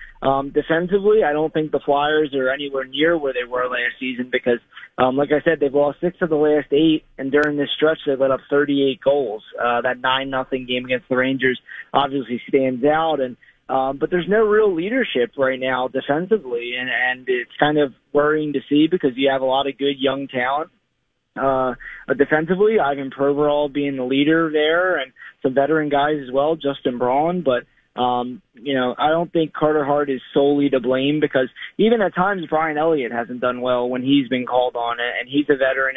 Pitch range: 130-150 Hz